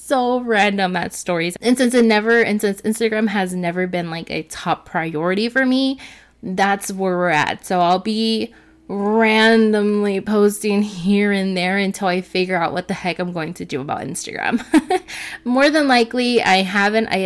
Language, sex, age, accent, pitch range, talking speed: English, female, 20-39, American, 180-235 Hz, 175 wpm